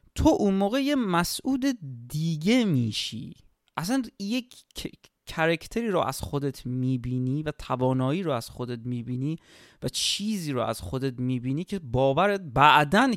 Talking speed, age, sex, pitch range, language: 130 wpm, 30-49, male, 125-175 Hz, Persian